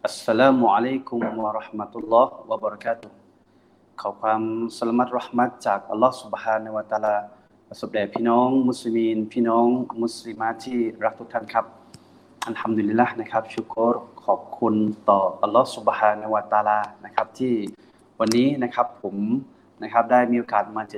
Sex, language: male, Thai